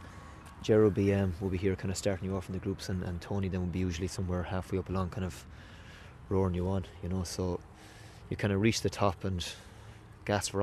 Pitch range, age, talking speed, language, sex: 85-105 Hz, 20-39, 245 wpm, English, male